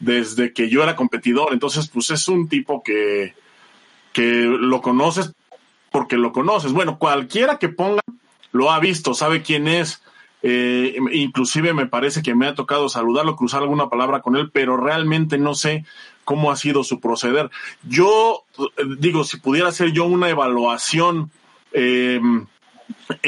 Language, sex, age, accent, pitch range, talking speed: Spanish, male, 30-49, Mexican, 135-180 Hz, 150 wpm